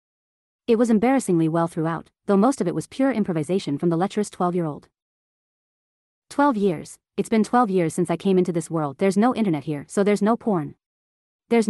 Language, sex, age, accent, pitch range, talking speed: English, female, 30-49, American, 165-215 Hz, 190 wpm